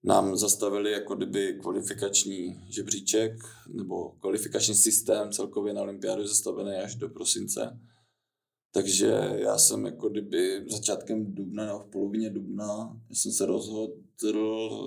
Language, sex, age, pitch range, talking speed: Czech, male, 20-39, 100-115 Hz, 115 wpm